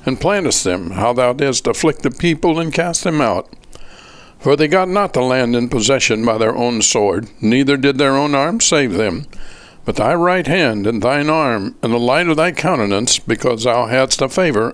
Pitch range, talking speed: 115-155 Hz, 205 wpm